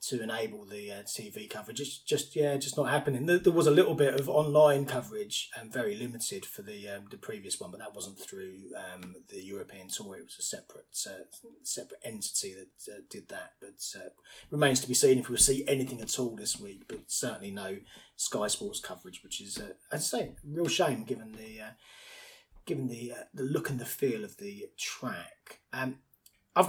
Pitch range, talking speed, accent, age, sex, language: 115-155 Hz, 210 wpm, British, 30-49, male, English